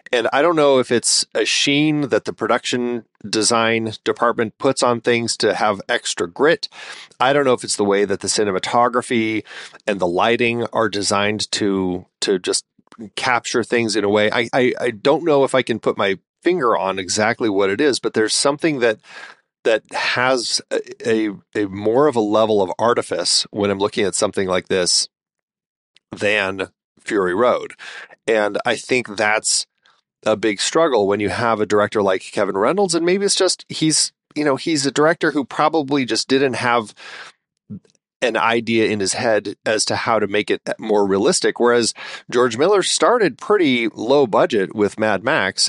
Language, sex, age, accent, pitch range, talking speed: English, male, 40-59, American, 105-140 Hz, 180 wpm